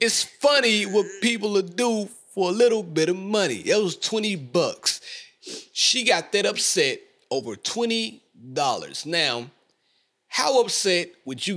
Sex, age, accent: male, 30-49, American